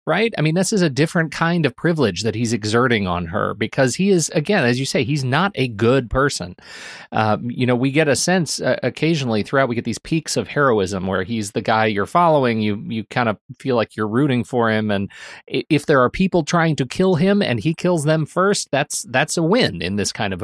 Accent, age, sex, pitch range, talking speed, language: American, 30-49, male, 110-145 Hz, 240 wpm, English